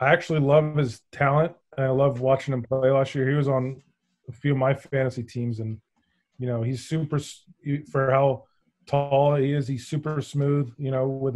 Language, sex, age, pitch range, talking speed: English, male, 20-39, 125-150 Hz, 205 wpm